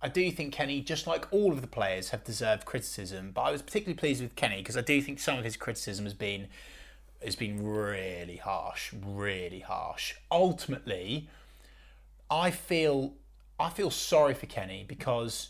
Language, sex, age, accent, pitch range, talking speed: English, male, 30-49, British, 110-150 Hz, 175 wpm